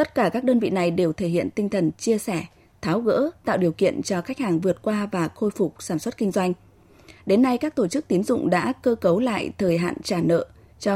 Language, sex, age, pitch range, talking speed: Vietnamese, female, 20-39, 170-235 Hz, 250 wpm